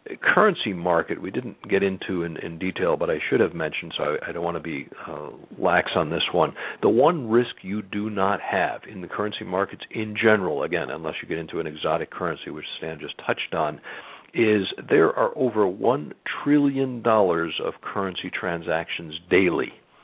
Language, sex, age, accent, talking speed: English, male, 60-79, American, 195 wpm